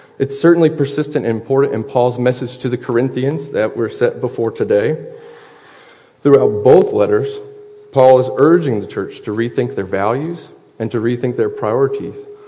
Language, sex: English, male